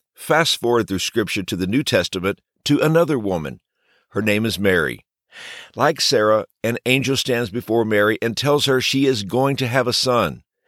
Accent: American